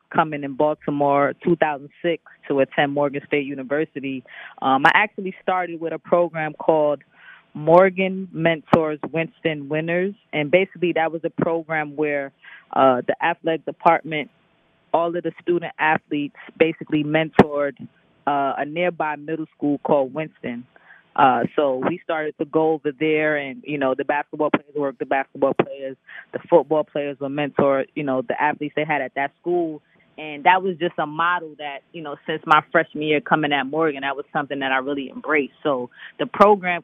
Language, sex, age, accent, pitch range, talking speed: English, female, 20-39, American, 140-165 Hz, 170 wpm